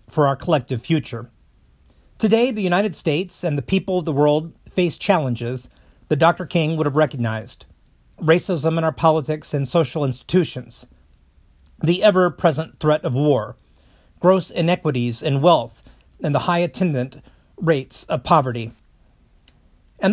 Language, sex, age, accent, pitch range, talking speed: English, male, 40-59, American, 130-180 Hz, 135 wpm